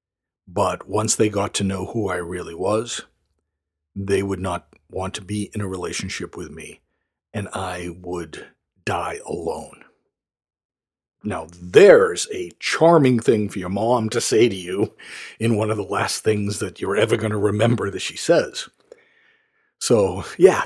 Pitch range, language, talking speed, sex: 95-130 Hz, English, 160 wpm, male